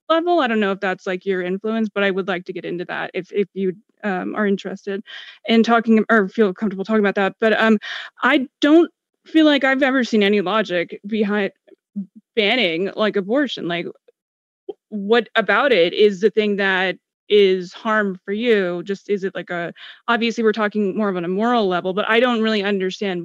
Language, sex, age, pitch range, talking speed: English, female, 20-39, 200-235 Hz, 195 wpm